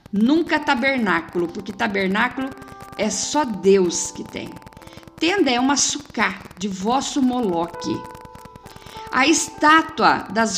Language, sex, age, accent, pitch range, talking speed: Portuguese, female, 50-69, Brazilian, 195-285 Hz, 110 wpm